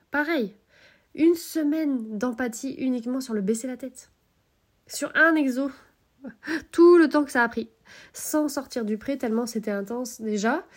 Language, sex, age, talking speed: French, female, 20-39, 155 wpm